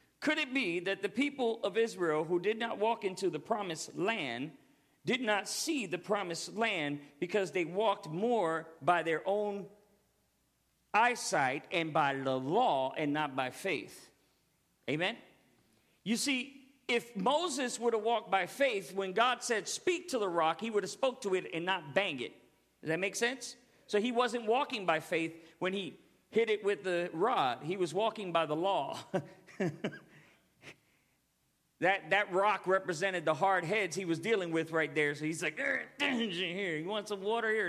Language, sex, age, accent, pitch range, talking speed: English, male, 50-69, American, 175-235 Hz, 175 wpm